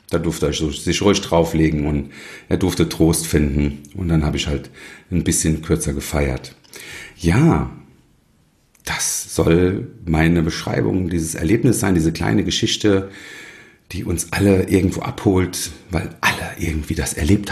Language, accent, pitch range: German, German, 75-95 Hz